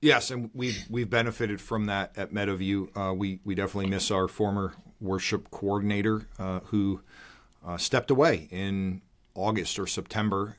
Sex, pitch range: male, 95-115 Hz